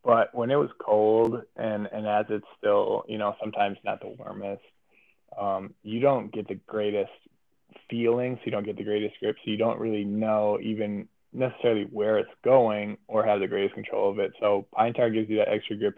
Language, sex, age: English, male, 20-39